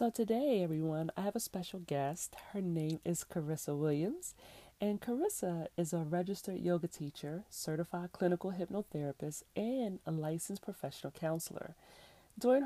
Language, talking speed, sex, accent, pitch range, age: English, 135 wpm, female, American, 155-195 Hz, 40-59